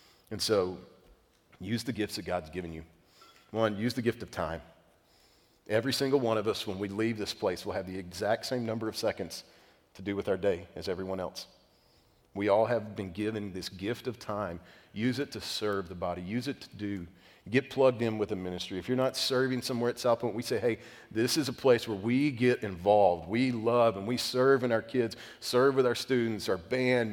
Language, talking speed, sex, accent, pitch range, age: English, 220 wpm, male, American, 100-125 Hz, 40-59